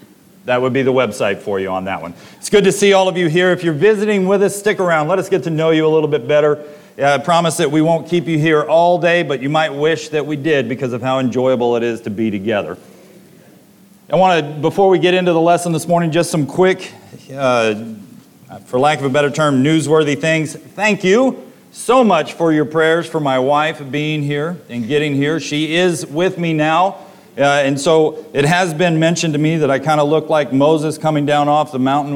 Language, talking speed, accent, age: English, 235 wpm, American, 40-59